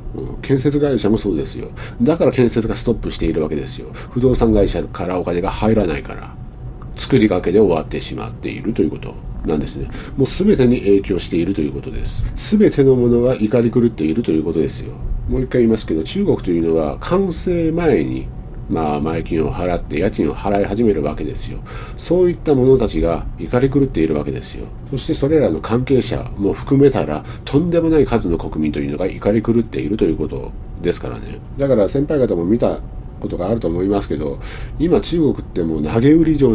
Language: Japanese